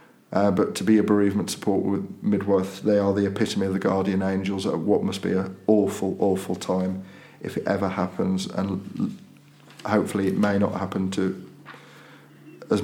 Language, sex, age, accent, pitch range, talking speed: English, male, 40-59, British, 95-110 Hz, 180 wpm